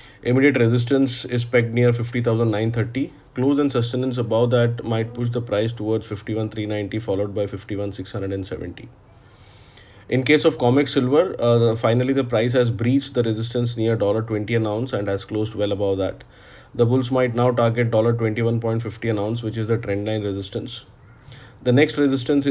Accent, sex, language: Indian, male, English